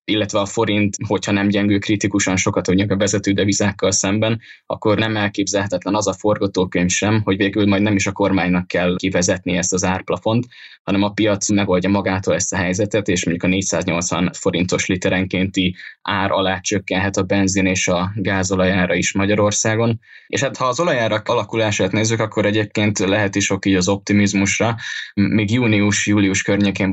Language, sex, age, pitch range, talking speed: Hungarian, male, 10-29, 90-100 Hz, 165 wpm